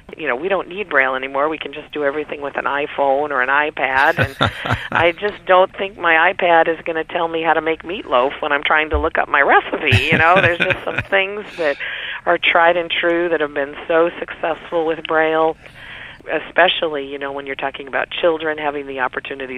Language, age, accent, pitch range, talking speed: English, 50-69, American, 145-170 Hz, 215 wpm